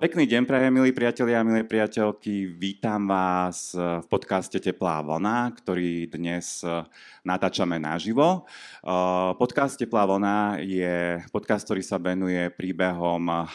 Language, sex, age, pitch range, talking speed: Slovak, male, 30-49, 85-100 Hz, 115 wpm